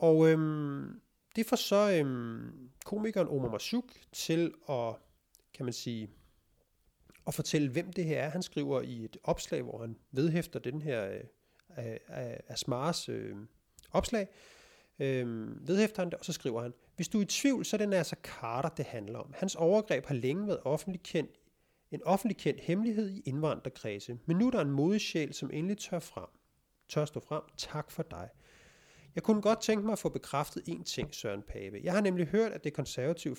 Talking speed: 180 wpm